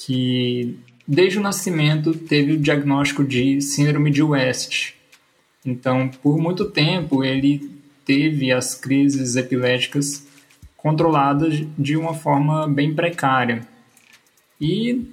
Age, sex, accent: 20-39, male, Brazilian